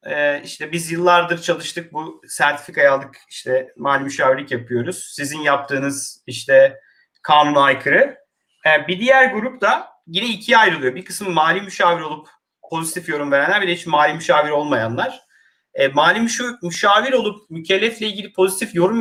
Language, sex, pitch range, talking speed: Turkish, male, 150-225 Hz, 145 wpm